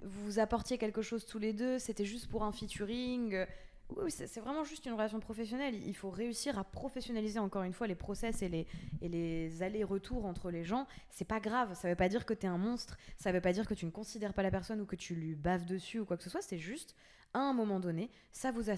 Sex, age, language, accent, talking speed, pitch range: female, 20-39, French, French, 250 wpm, 185-230 Hz